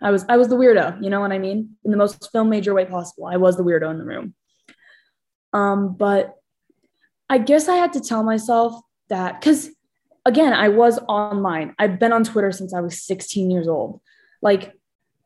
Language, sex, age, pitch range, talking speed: English, female, 20-39, 185-245 Hz, 200 wpm